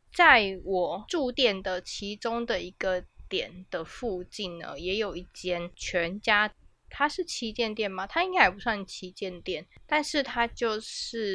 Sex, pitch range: female, 180-245 Hz